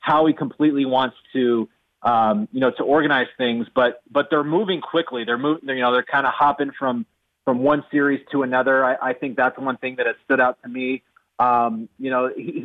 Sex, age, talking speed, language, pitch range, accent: male, 30-49, 215 wpm, English, 125-145 Hz, American